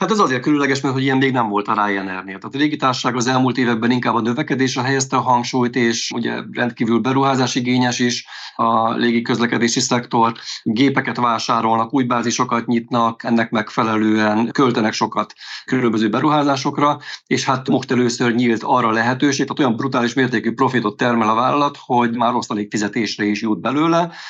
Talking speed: 165 wpm